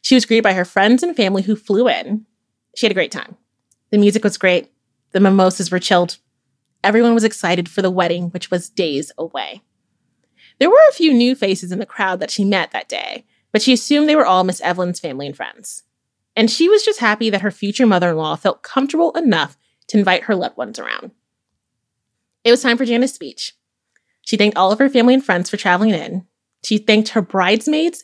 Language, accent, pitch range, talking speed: English, American, 185-245 Hz, 210 wpm